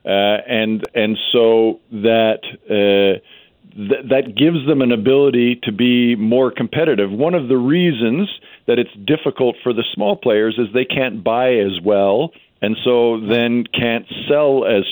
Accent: American